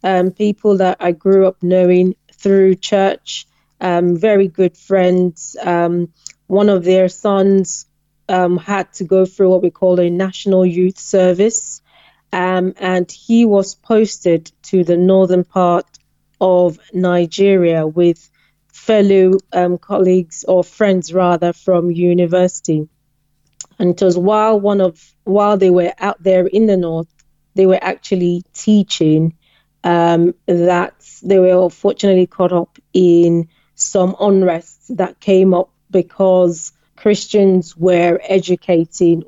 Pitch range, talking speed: 170-190 Hz, 130 wpm